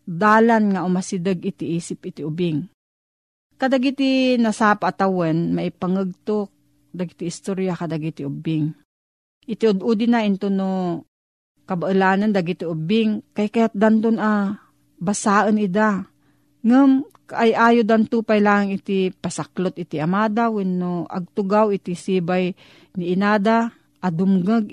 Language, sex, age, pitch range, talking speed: Filipino, female, 40-59, 175-215 Hz, 110 wpm